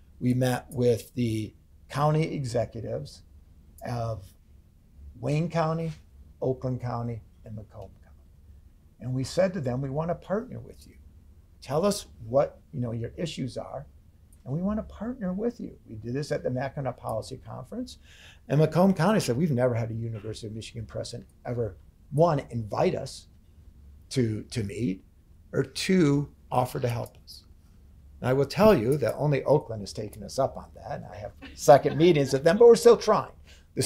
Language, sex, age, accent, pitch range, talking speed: English, male, 50-69, American, 90-140 Hz, 170 wpm